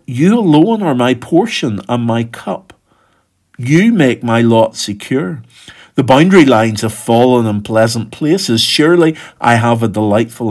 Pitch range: 110-135 Hz